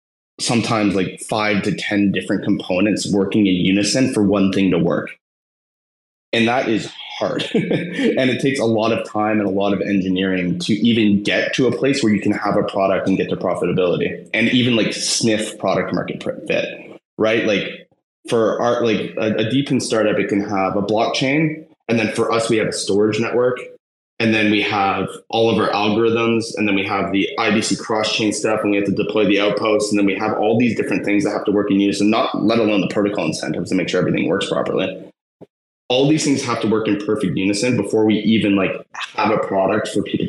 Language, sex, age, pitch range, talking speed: English, male, 20-39, 100-115 Hz, 215 wpm